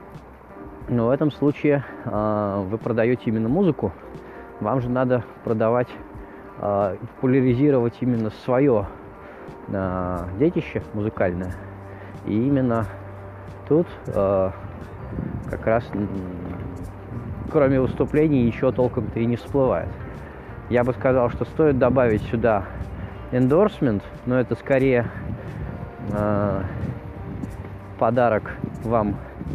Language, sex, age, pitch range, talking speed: Russian, male, 20-39, 100-120 Hz, 95 wpm